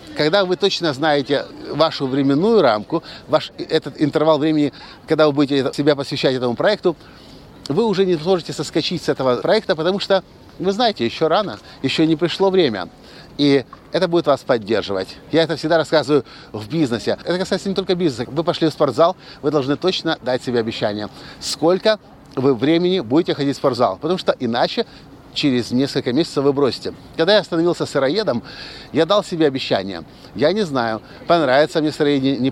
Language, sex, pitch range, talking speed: Russian, male, 140-175 Hz, 170 wpm